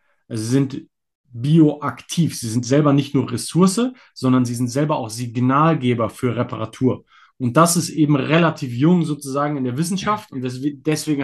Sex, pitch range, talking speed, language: male, 125-155 Hz, 155 wpm, German